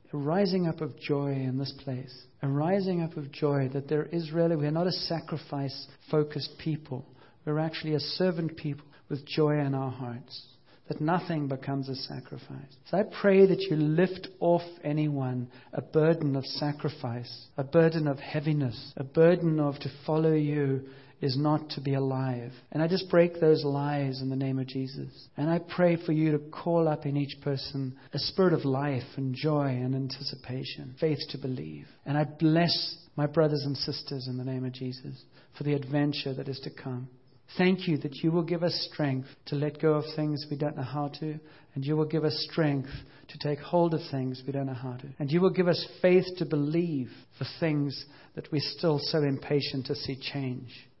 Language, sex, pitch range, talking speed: English, male, 135-160 Hz, 200 wpm